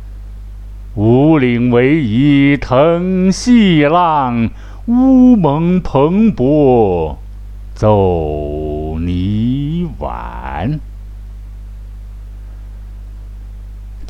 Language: Chinese